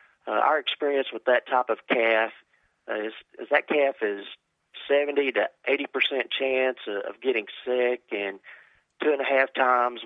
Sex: male